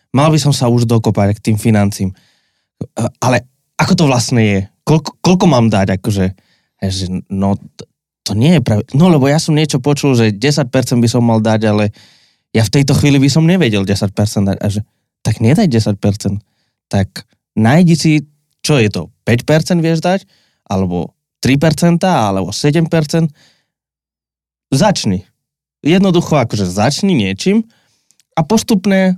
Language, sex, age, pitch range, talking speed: Slovak, male, 20-39, 110-155 Hz, 145 wpm